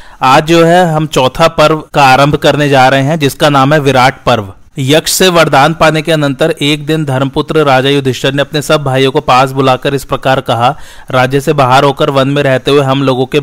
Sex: male